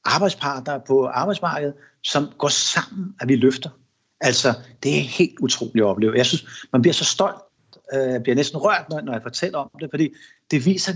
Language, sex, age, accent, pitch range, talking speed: Danish, male, 60-79, native, 130-175 Hz, 190 wpm